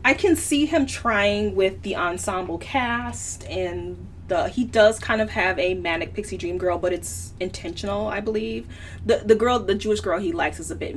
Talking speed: 205 wpm